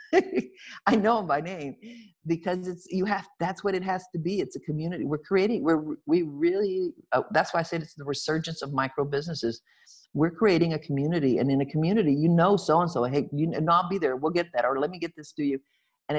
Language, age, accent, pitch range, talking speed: English, 50-69, American, 140-180 Hz, 225 wpm